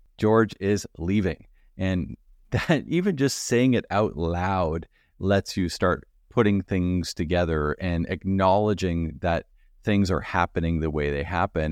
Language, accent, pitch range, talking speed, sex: English, American, 85-105 Hz, 140 wpm, male